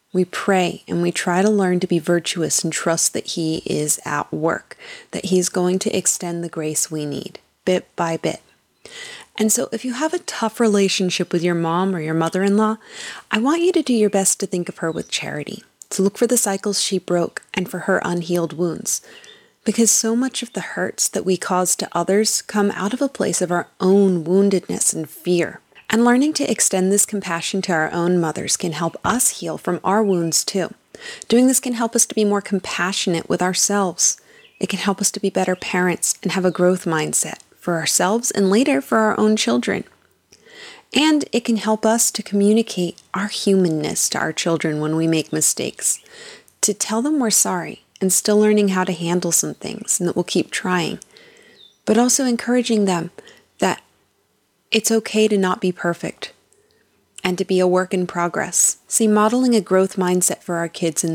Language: English